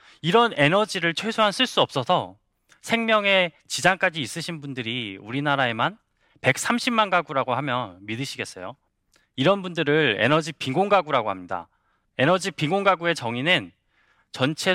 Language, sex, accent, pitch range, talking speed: English, male, Korean, 140-200 Hz, 100 wpm